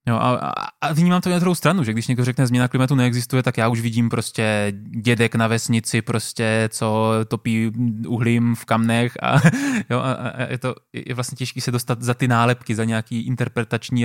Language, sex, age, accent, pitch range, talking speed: Czech, male, 20-39, native, 115-140 Hz, 190 wpm